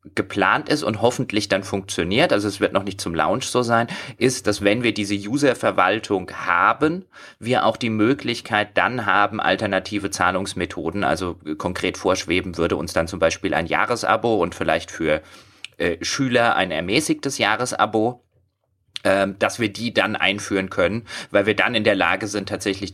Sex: male